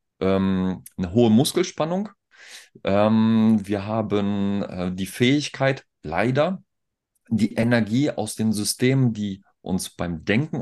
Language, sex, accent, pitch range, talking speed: German, male, German, 95-125 Hz, 95 wpm